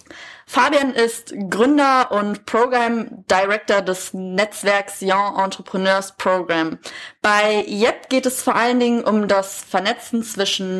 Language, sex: German, female